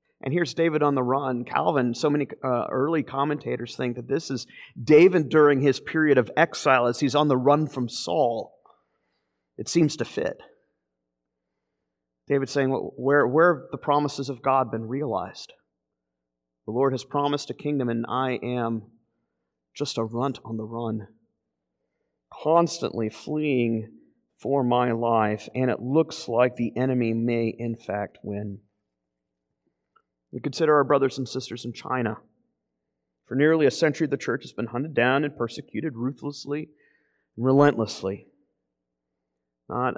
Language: English